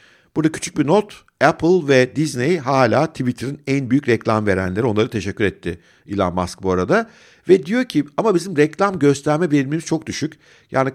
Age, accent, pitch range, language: 50-69, native, 110-150 Hz, Turkish